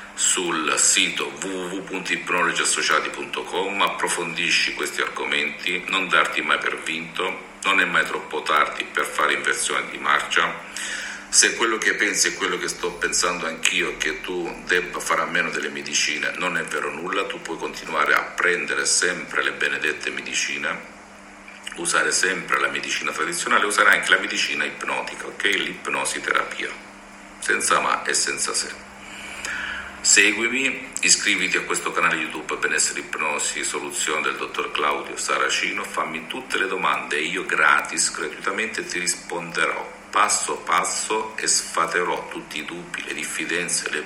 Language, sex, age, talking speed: Italian, male, 50-69, 140 wpm